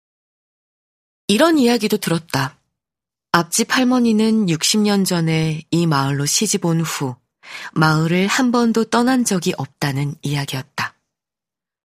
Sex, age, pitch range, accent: female, 20-39, 155-215 Hz, native